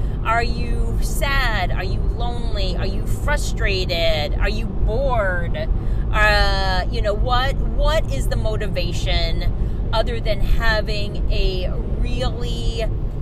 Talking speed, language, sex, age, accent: 115 wpm, English, female, 30-49, American